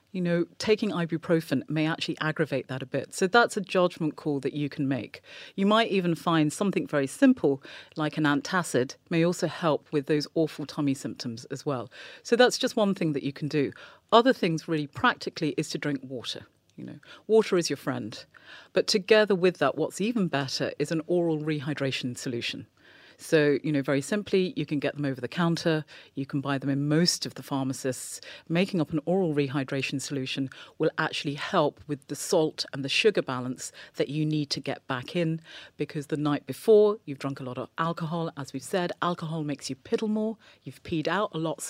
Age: 40-59